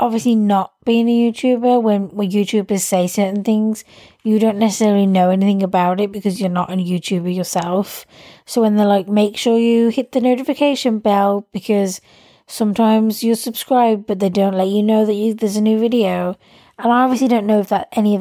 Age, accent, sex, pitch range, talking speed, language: 20-39, British, female, 190-235 Hz, 200 wpm, English